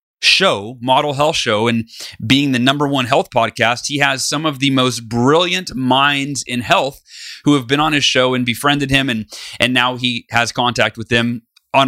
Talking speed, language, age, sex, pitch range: 195 wpm, English, 30-49, male, 120-140 Hz